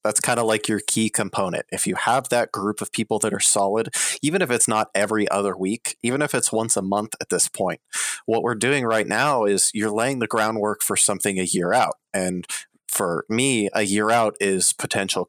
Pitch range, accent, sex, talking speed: 100-115 Hz, American, male, 220 wpm